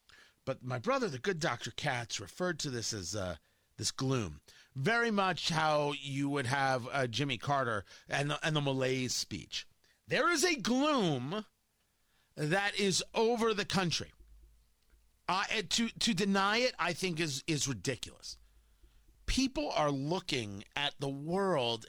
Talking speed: 150 wpm